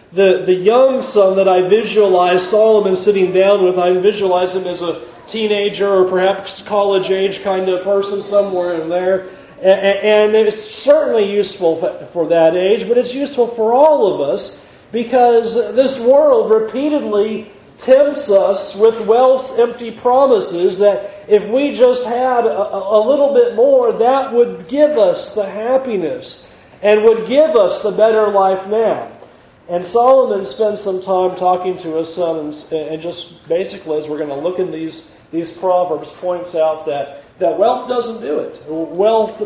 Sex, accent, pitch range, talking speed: male, American, 185-240 Hz, 160 wpm